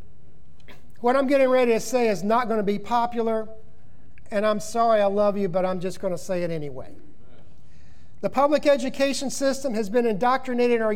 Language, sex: English, male